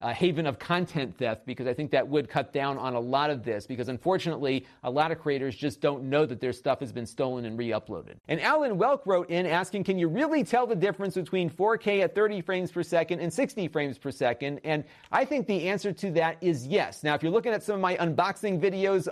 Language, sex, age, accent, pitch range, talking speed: English, male, 40-59, American, 140-180 Hz, 240 wpm